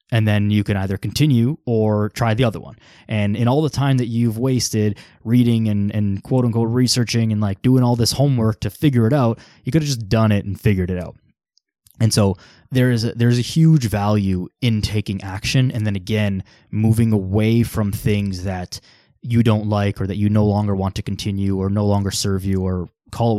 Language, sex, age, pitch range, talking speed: English, male, 20-39, 100-120 Hz, 215 wpm